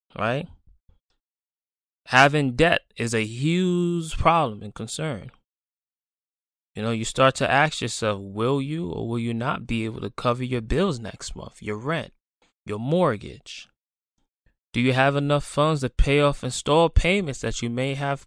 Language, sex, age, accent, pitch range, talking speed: English, male, 20-39, American, 110-150 Hz, 160 wpm